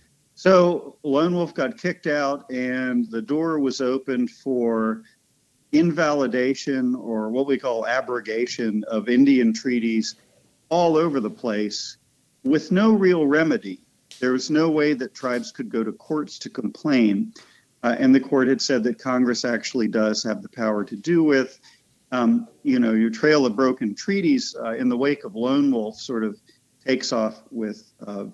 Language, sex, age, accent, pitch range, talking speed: English, male, 50-69, American, 115-150 Hz, 165 wpm